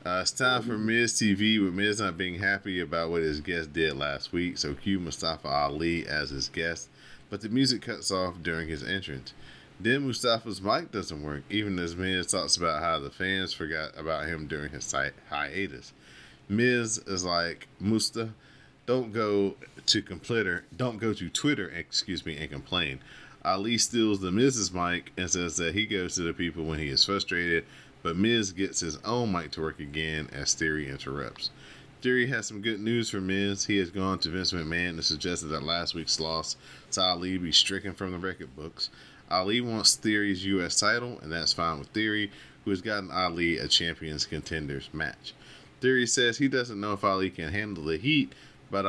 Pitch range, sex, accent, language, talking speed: 80-105 Hz, male, American, English, 190 wpm